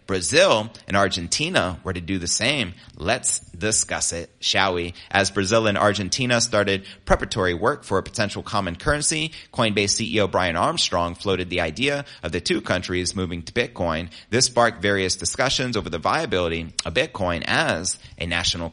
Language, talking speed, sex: English, 165 wpm, male